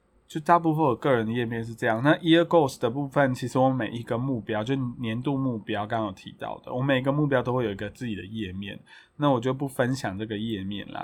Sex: male